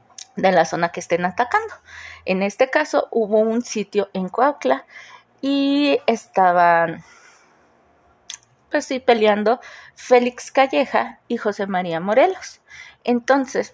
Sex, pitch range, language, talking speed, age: female, 200-265 Hz, Spanish, 115 wpm, 30-49